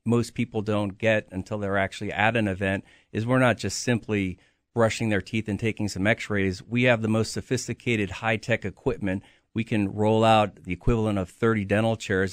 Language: English